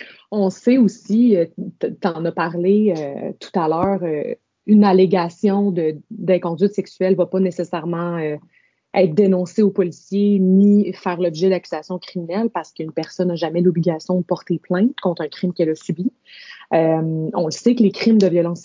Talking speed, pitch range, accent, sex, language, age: 175 wpm, 165-200 Hz, Canadian, female, French, 30-49